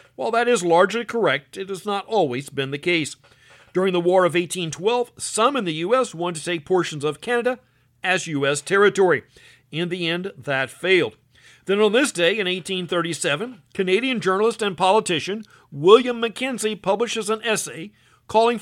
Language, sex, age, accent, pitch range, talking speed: English, male, 50-69, American, 150-205 Hz, 165 wpm